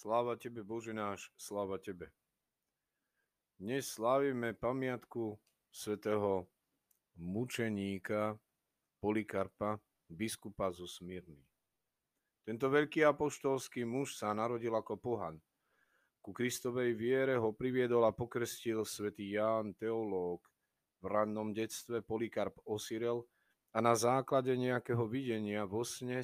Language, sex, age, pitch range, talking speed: Slovak, male, 40-59, 105-125 Hz, 105 wpm